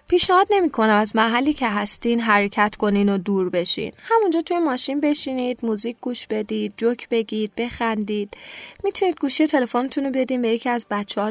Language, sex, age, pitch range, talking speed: Persian, female, 10-29, 220-305 Hz, 160 wpm